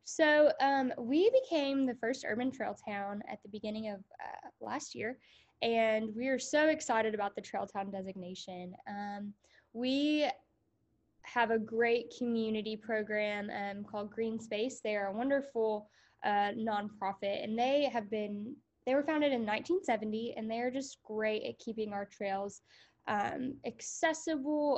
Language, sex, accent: English, female, American